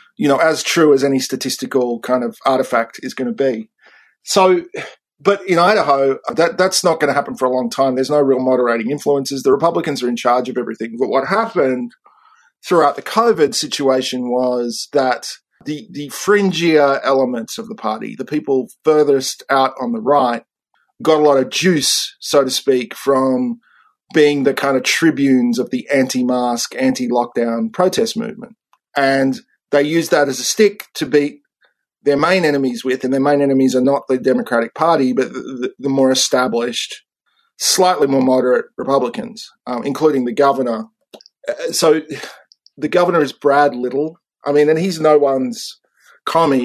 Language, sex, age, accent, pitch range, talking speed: English, male, 40-59, Australian, 130-155 Hz, 170 wpm